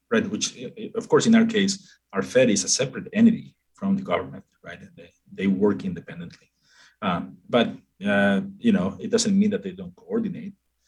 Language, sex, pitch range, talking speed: English, male, 180-225 Hz, 180 wpm